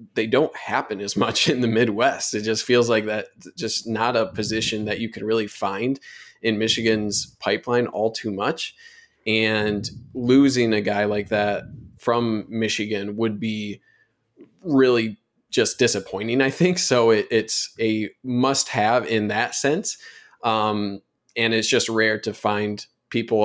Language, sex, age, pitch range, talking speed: English, male, 20-39, 105-120 Hz, 150 wpm